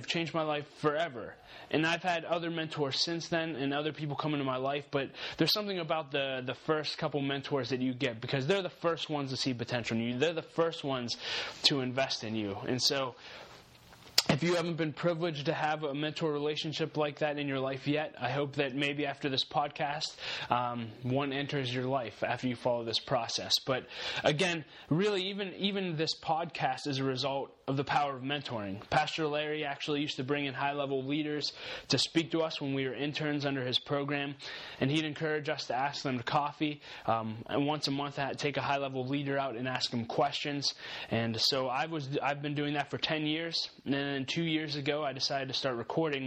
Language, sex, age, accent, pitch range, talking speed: English, male, 20-39, American, 130-155 Hz, 220 wpm